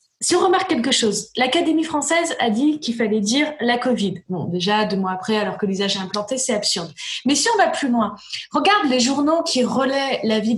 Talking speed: 215 wpm